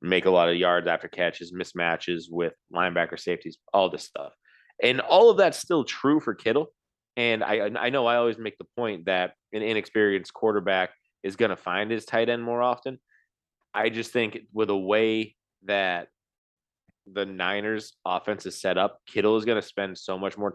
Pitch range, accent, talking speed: 95-115 Hz, American, 190 wpm